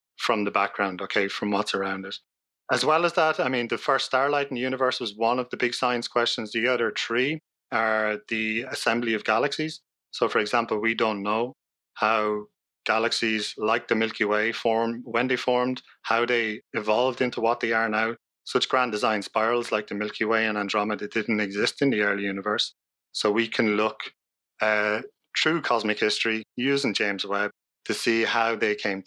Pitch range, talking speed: 105-125 Hz, 190 wpm